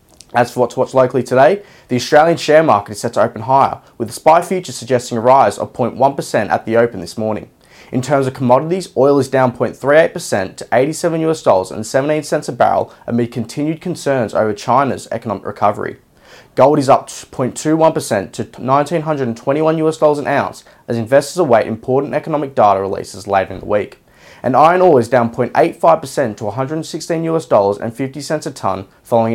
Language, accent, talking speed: English, Australian, 160 wpm